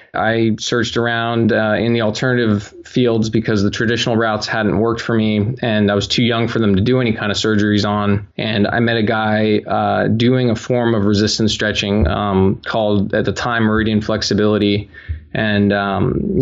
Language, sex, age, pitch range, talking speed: English, male, 20-39, 105-120 Hz, 185 wpm